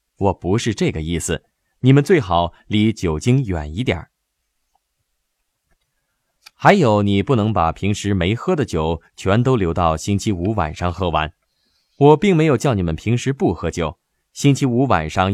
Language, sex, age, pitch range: Chinese, male, 20-39, 85-120 Hz